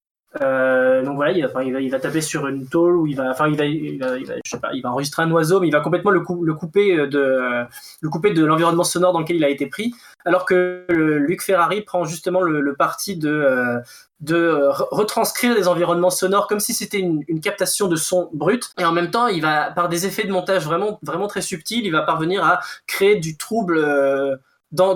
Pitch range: 150-190 Hz